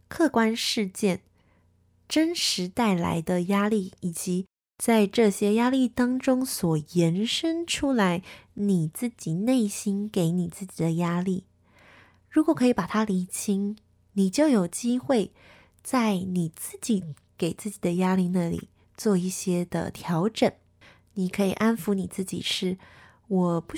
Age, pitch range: 20-39, 180-240 Hz